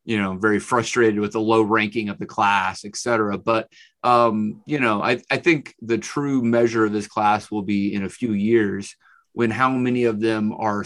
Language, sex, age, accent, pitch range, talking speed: English, male, 30-49, American, 105-120 Hz, 210 wpm